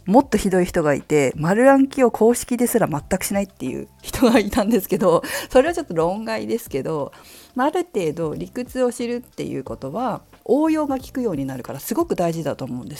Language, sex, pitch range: Japanese, female, 155-265 Hz